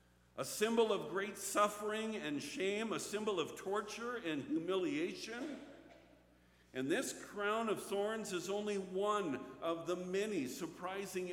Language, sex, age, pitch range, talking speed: English, male, 50-69, 140-200 Hz, 130 wpm